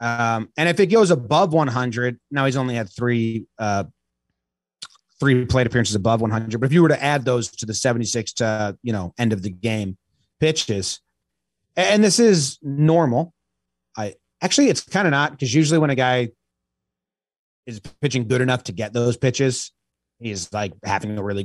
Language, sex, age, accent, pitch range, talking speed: English, male, 30-49, American, 105-170 Hz, 180 wpm